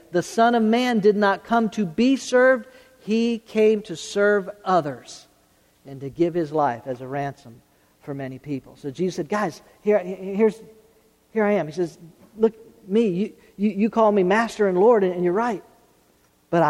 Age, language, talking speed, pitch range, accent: 50-69, English, 185 wpm, 185-225 Hz, American